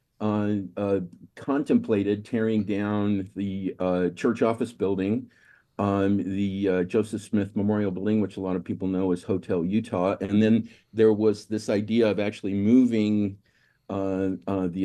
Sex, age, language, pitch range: male, 50-69, English, 90-110 Hz